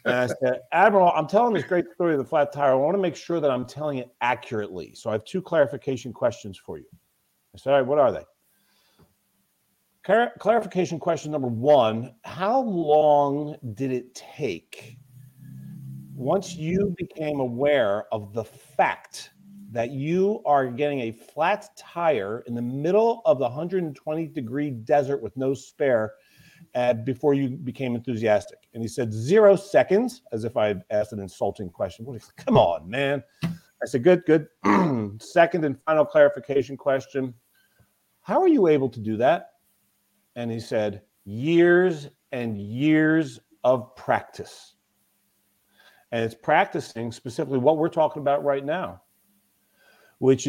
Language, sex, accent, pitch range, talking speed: English, male, American, 120-165 Hz, 155 wpm